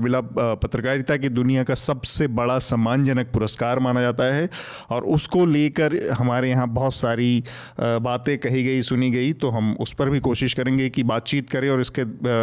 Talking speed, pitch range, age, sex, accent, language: 170 wpm, 120-140 Hz, 30-49, male, native, Hindi